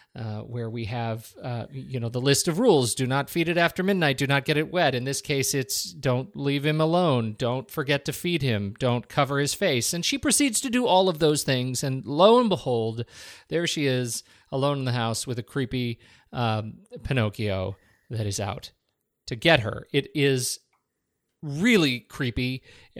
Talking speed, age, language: 195 wpm, 40-59, English